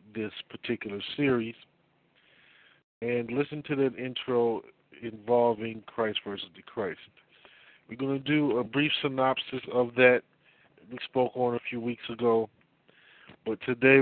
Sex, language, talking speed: male, English, 135 wpm